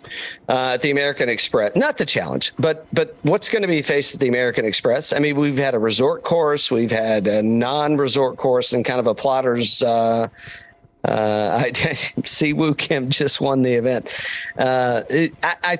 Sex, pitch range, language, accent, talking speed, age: male, 115-155 Hz, English, American, 180 wpm, 50-69